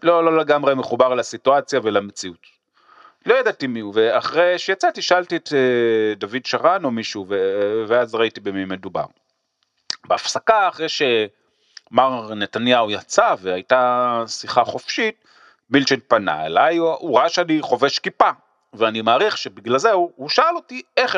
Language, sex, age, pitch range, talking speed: Hebrew, male, 30-49, 115-180 Hz, 140 wpm